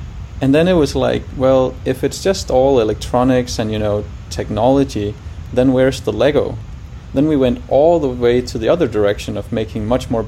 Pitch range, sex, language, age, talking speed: 105-125 Hz, male, German, 20-39, 195 wpm